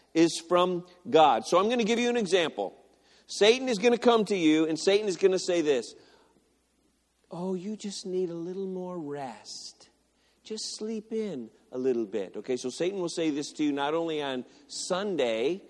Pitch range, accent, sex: 155-235 Hz, American, male